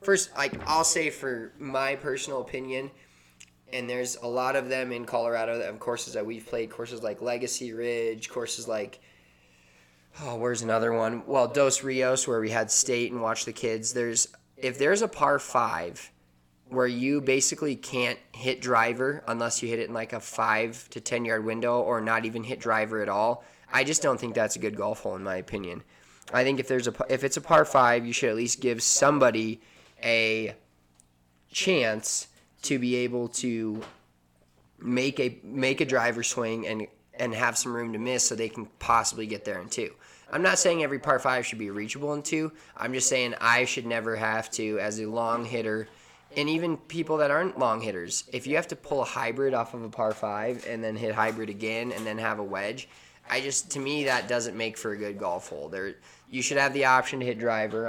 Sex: male